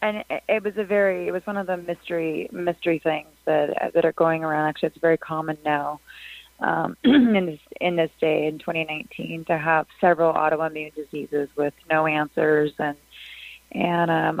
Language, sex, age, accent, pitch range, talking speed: English, female, 30-49, American, 155-175 Hz, 175 wpm